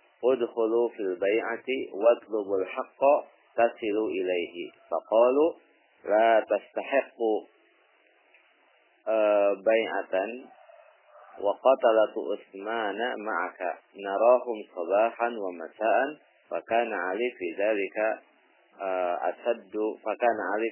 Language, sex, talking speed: Indonesian, male, 60 wpm